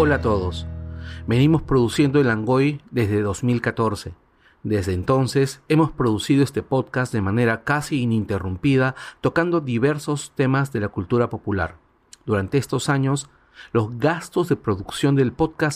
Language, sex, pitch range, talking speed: Spanish, male, 105-145 Hz, 135 wpm